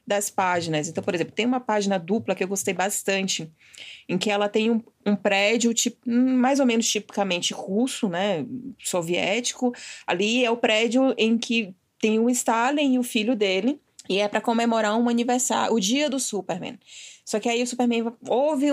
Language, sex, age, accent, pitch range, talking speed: Portuguese, female, 20-39, Brazilian, 195-245 Hz, 185 wpm